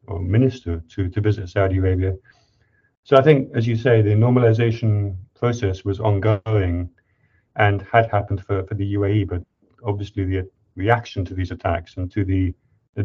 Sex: male